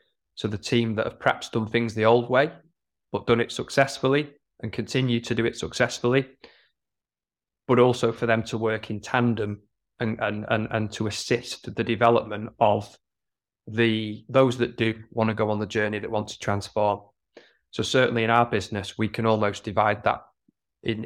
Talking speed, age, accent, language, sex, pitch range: 180 wpm, 20-39, British, English, male, 105-120 Hz